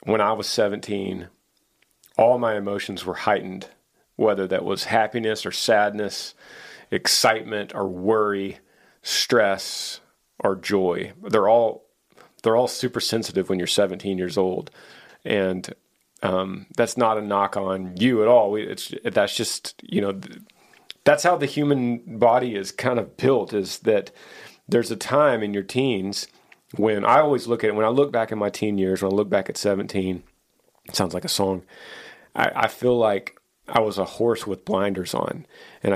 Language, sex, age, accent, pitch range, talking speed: English, male, 40-59, American, 95-115 Hz, 170 wpm